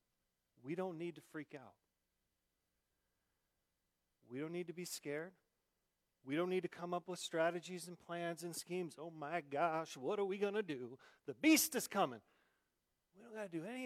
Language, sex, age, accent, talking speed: English, male, 40-59, American, 185 wpm